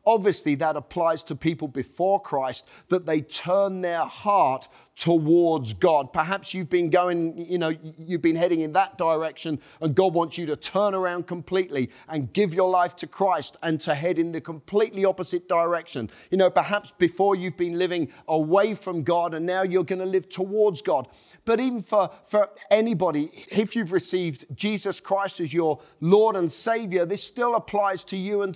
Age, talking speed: 40-59, 185 wpm